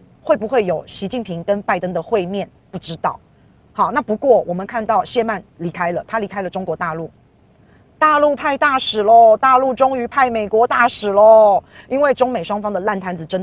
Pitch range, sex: 175-235 Hz, female